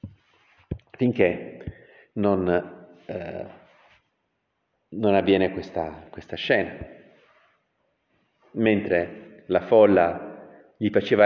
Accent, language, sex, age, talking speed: native, Italian, male, 40-59, 65 wpm